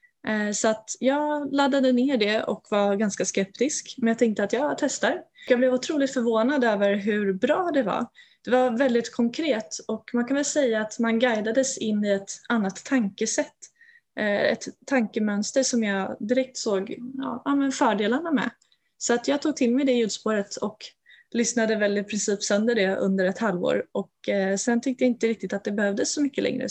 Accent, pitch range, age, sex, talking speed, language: native, 205-260 Hz, 20-39, female, 180 wpm, Swedish